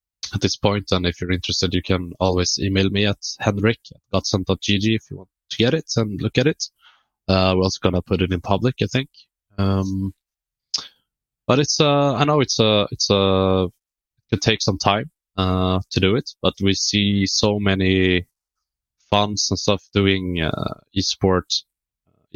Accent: Norwegian